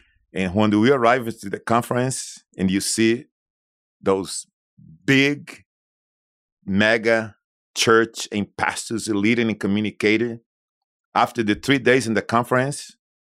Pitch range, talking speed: 100-125 Hz, 120 wpm